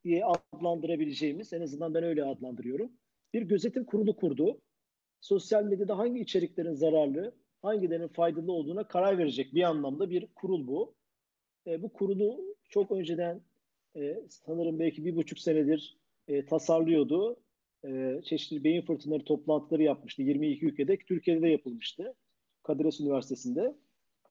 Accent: native